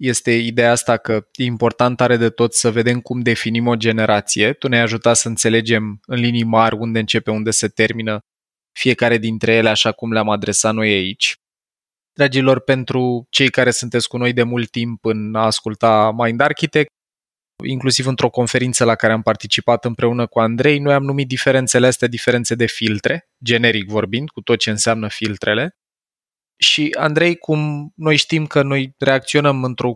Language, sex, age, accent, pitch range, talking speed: Romanian, male, 20-39, native, 115-130 Hz, 170 wpm